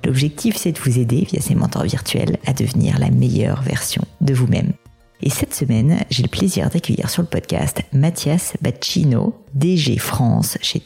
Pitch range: 130-175 Hz